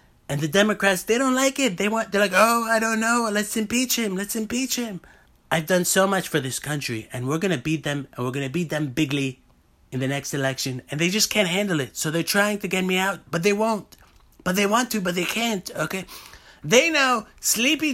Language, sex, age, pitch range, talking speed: English, male, 30-49, 150-210 Hz, 250 wpm